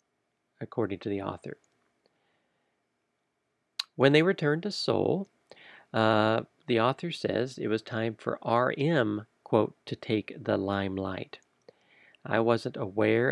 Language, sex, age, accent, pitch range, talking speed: English, male, 40-59, American, 105-125 Hz, 115 wpm